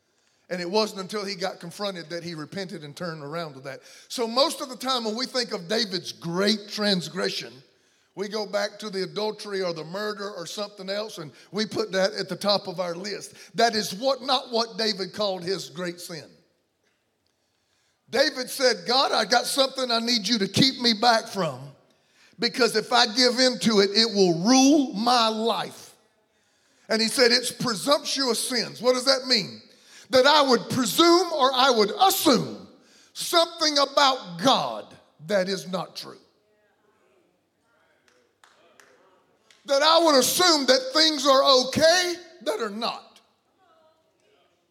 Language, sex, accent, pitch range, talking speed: English, male, American, 195-255 Hz, 160 wpm